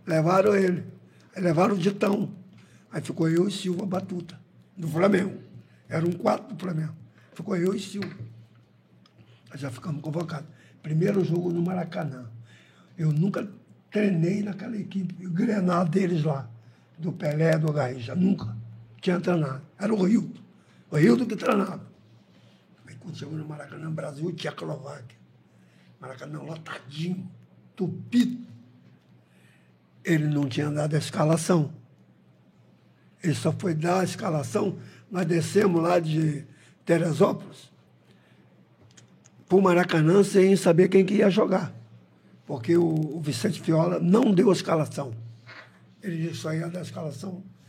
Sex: male